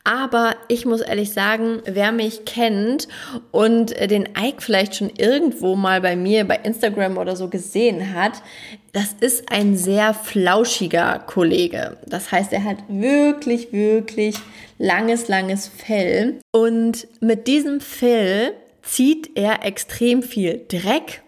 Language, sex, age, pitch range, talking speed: German, female, 20-39, 195-240 Hz, 135 wpm